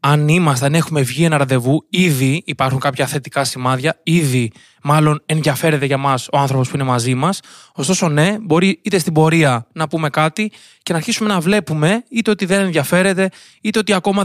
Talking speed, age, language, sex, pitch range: 185 wpm, 20-39, Greek, male, 140-175 Hz